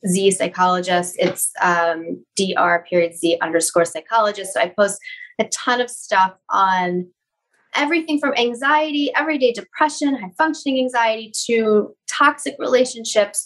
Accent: American